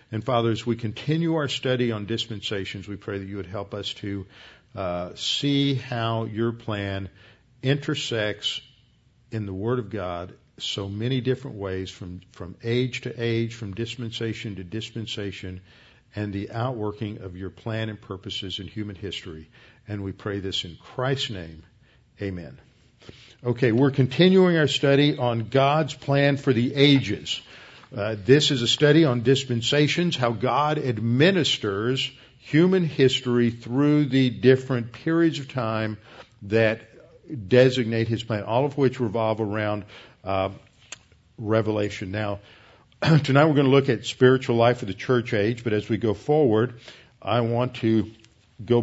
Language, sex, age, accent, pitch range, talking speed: English, male, 50-69, American, 105-130 Hz, 150 wpm